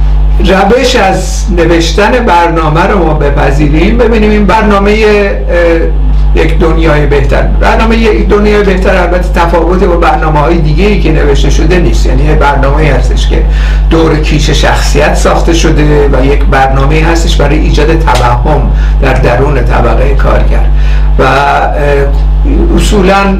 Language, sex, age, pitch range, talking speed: Persian, male, 60-79, 145-185 Hz, 125 wpm